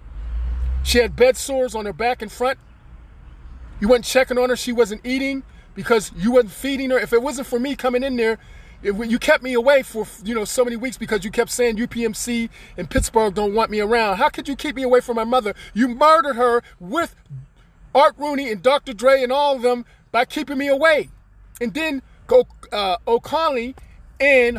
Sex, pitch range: male, 190-270 Hz